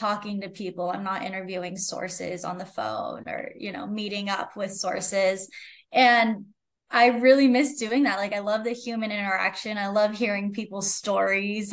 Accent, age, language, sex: American, 10-29, English, female